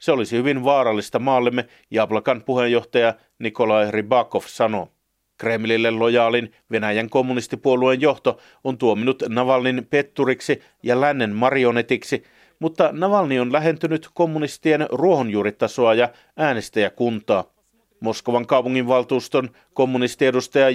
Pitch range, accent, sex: 120-155 Hz, native, male